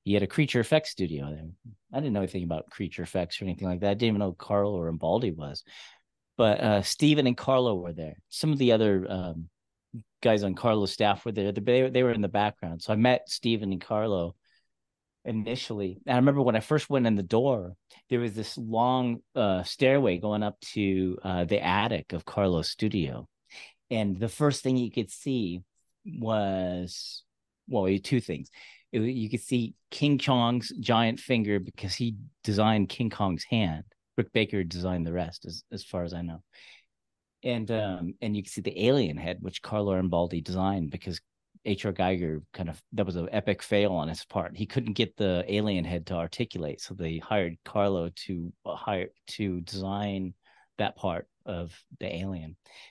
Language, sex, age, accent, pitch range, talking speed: English, male, 40-59, American, 90-115 Hz, 190 wpm